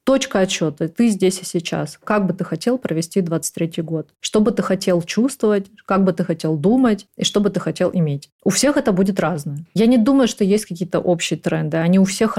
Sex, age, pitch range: female, 20-39, 170-205 Hz